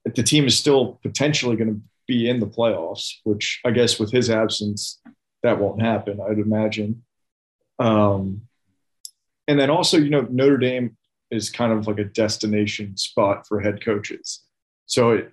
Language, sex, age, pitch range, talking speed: English, male, 30-49, 105-120 Hz, 170 wpm